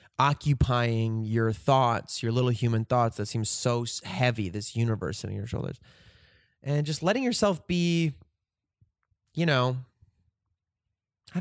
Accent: American